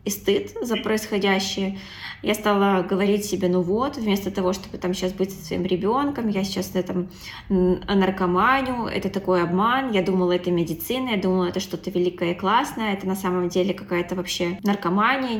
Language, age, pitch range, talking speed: Russian, 20-39, 185-220 Hz, 170 wpm